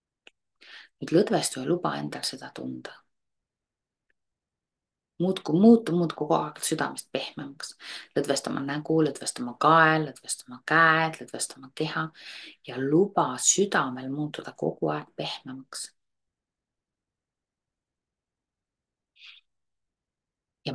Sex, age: female, 30-49